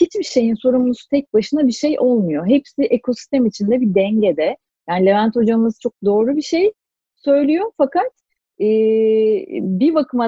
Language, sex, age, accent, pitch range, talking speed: Turkish, female, 30-49, native, 215-270 Hz, 145 wpm